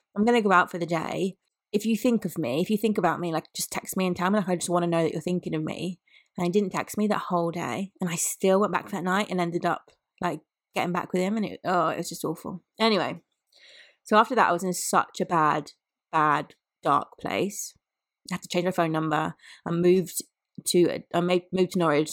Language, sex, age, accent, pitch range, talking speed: English, female, 20-39, British, 170-190 Hz, 245 wpm